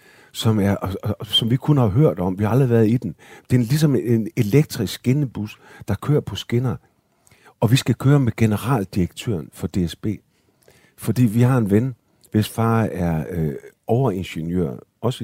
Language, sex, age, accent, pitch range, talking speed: Danish, male, 50-69, native, 105-140 Hz, 170 wpm